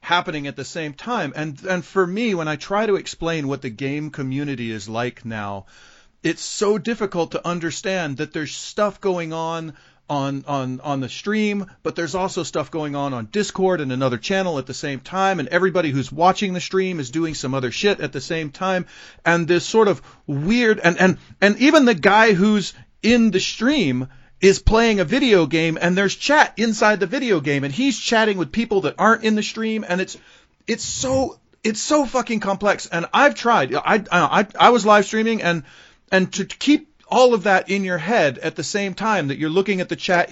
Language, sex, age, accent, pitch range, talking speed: English, male, 40-59, American, 155-210 Hz, 210 wpm